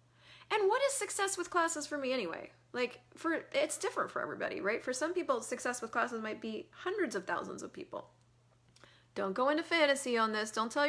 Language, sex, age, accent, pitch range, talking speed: English, female, 30-49, American, 195-315 Hz, 205 wpm